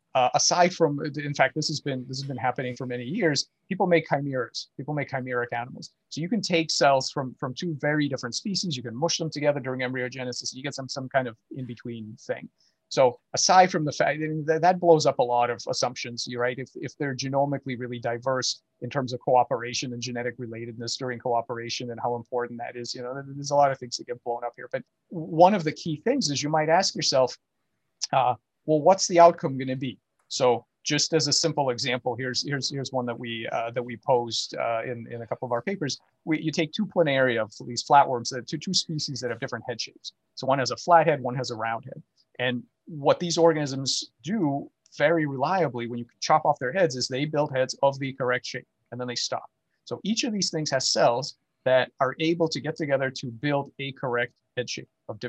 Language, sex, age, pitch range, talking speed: English, male, 30-49, 125-155 Hz, 230 wpm